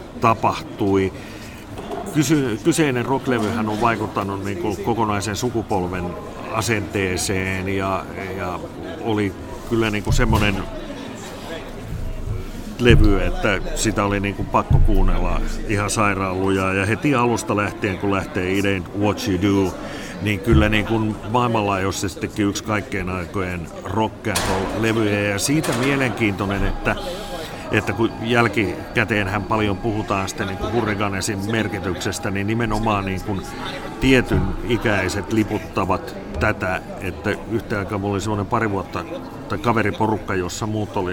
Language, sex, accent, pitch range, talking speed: Finnish, male, native, 95-110 Hz, 115 wpm